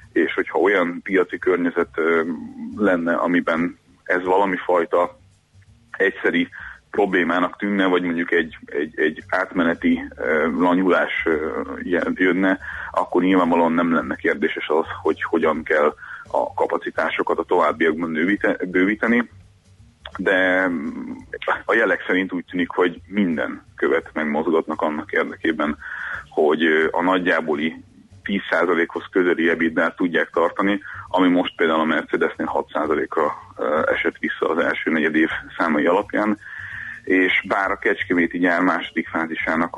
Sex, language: male, Hungarian